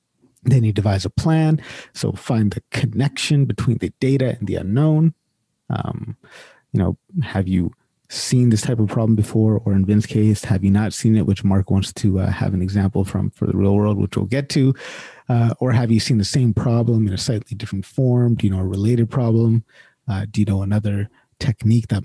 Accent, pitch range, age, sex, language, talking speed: American, 100-120 Hz, 30-49, male, English, 210 wpm